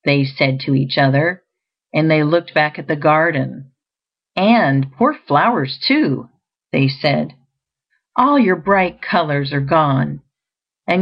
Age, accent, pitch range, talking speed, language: 50-69, American, 140-175 Hz, 135 wpm, English